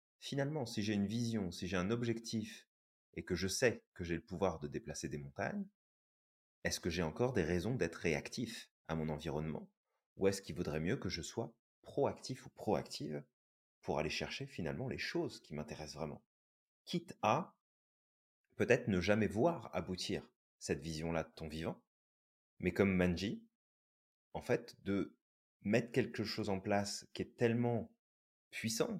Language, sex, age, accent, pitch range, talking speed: French, male, 30-49, French, 85-115 Hz, 165 wpm